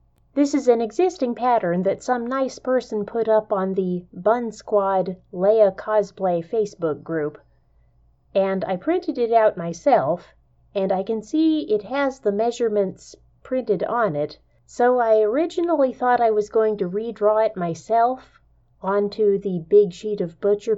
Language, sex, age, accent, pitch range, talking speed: English, female, 30-49, American, 180-230 Hz, 155 wpm